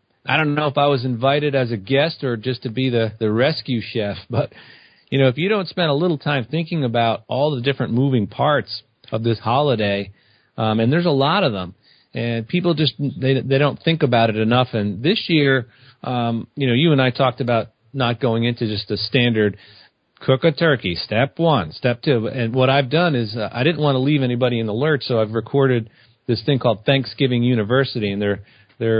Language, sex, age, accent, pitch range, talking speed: English, male, 40-59, American, 110-140 Hz, 215 wpm